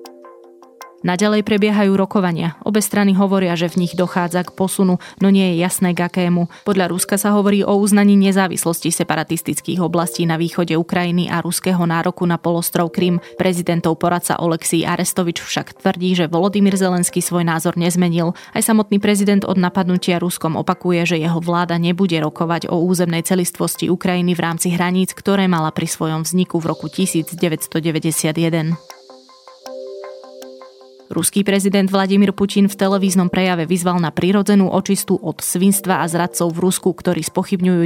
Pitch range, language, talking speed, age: 165-190 Hz, Slovak, 150 wpm, 20-39